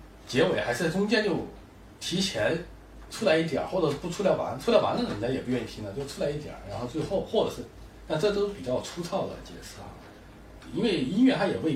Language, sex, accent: Chinese, male, native